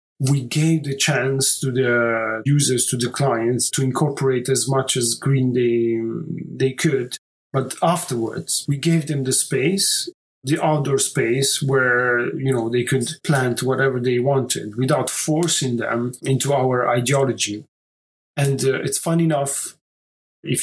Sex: male